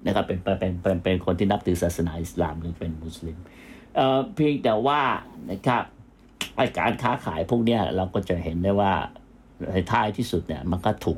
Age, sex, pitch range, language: 60-79, male, 85-100 Hz, Thai